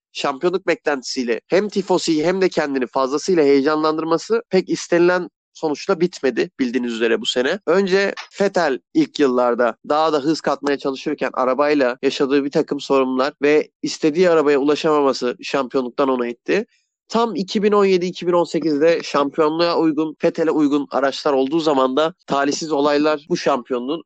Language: Turkish